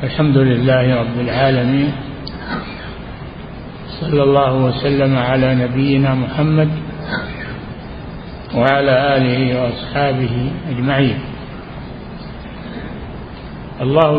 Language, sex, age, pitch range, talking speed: Arabic, male, 50-69, 135-155 Hz, 65 wpm